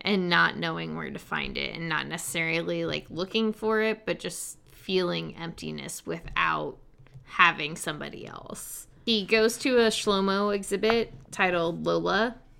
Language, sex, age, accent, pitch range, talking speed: English, female, 10-29, American, 135-190 Hz, 145 wpm